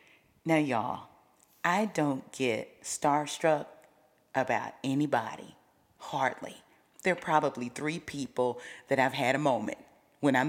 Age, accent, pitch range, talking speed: 40-59, American, 145-205 Hz, 120 wpm